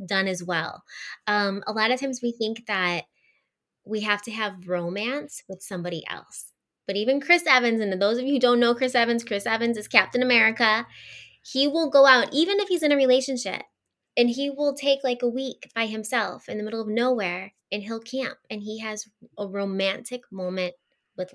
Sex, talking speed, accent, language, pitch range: female, 200 wpm, American, English, 190-265 Hz